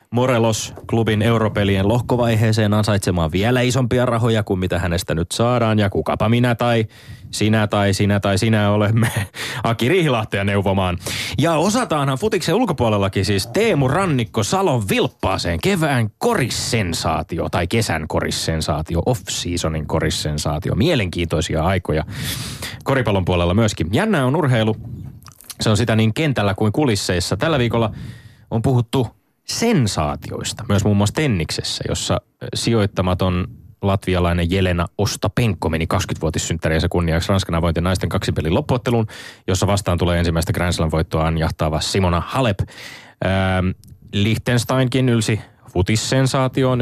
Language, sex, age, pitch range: Finnish, male, 30-49, 95-120 Hz